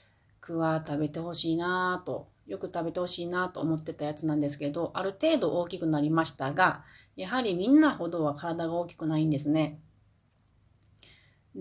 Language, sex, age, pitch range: Japanese, female, 30-49, 140-190 Hz